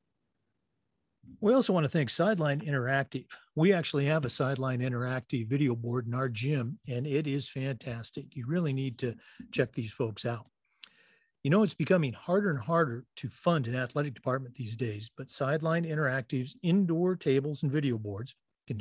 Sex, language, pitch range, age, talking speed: male, English, 125-165 Hz, 50-69, 170 wpm